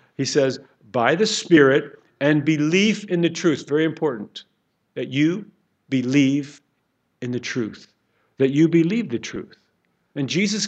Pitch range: 155-210 Hz